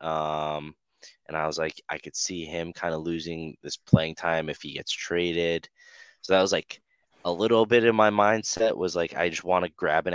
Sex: male